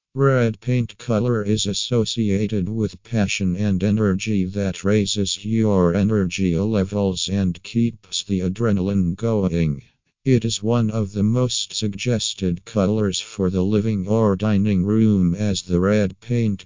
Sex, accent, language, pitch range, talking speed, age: male, American, English, 95-110 Hz, 135 wpm, 50-69